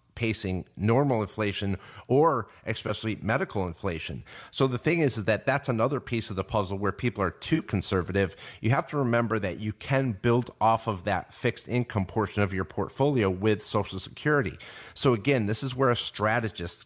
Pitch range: 100-130 Hz